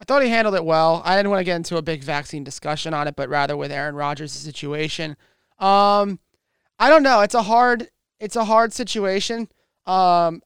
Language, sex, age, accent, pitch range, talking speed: English, male, 20-39, American, 160-205 Hz, 205 wpm